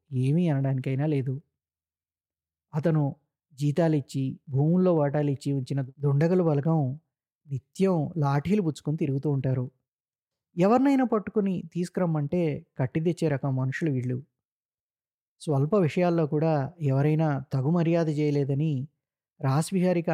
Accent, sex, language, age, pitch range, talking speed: native, male, Telugu, 20-39, 135-165 Hz, 85 wpm